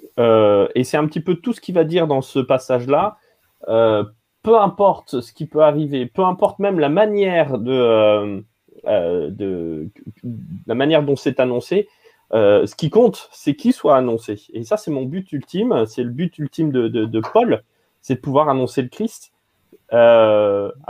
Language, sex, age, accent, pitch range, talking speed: French, male, 20-39, French, 125-165 Hz, 180 wpm